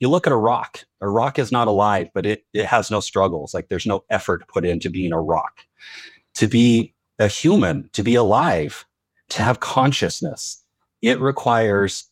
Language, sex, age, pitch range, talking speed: English, male, 30-49, 100-115 Hz, 185 wpm